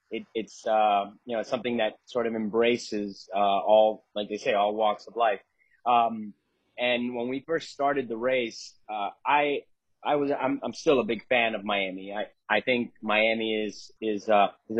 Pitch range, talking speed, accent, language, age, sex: 105-120 Hz, 195 wpm, American, English, 30-49, male